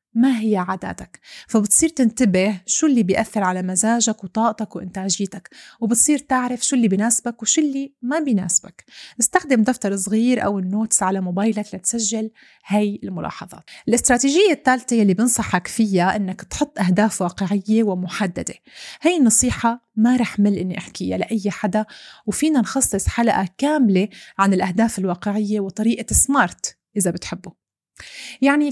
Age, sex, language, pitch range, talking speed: 30-49, female, Arabic, 200-250 Hz, 130 wpm